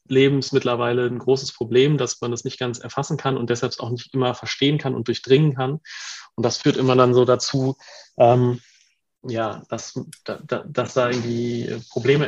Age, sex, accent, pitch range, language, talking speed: 30-49, male, German, 115-130 Hz, German, 180 wpm